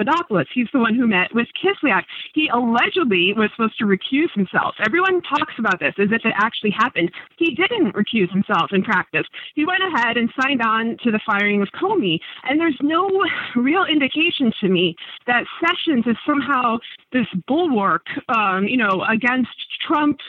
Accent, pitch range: American, 210-280 Hz